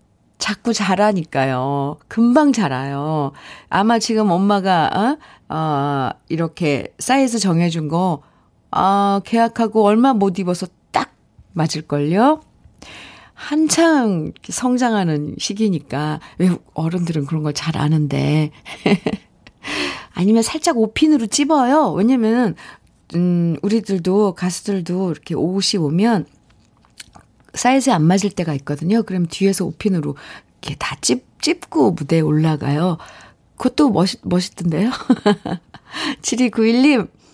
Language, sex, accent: Korean, female, native